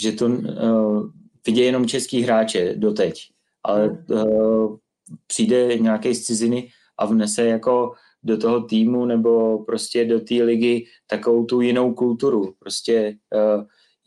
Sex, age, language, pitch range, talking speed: male, 30-49, Czech, 105-115 Hz, 130 wpm